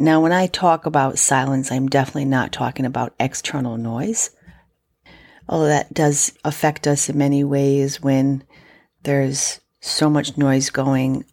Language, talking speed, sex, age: English, 145 wpm, female, 40-59